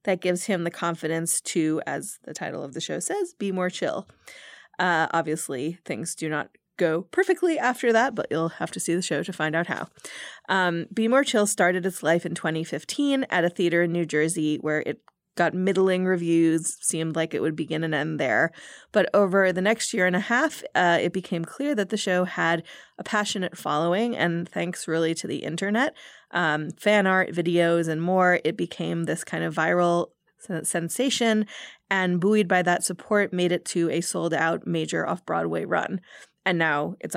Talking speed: 190 wpm